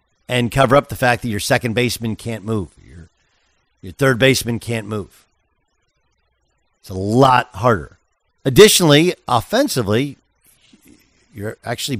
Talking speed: 125 wpm